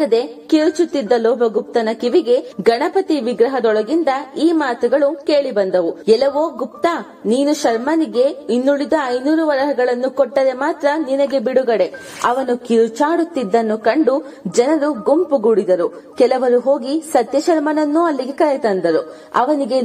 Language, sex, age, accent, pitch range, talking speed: English, female, 20-39, Indian, 230-300 Hz, 100 wpm